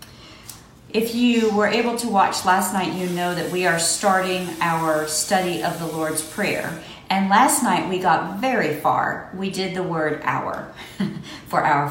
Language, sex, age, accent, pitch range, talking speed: English, female, 50-69, American, 155-195 Hz, 170 wpm